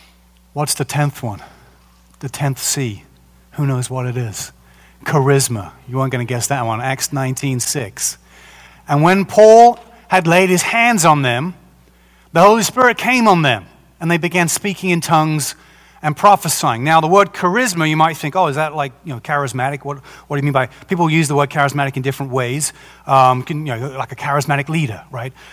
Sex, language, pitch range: male, English, 130-180 Hz